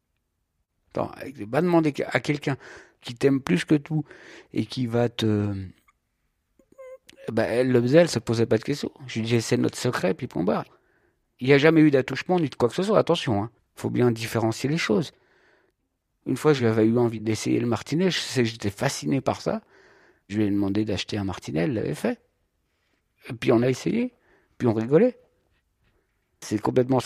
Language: French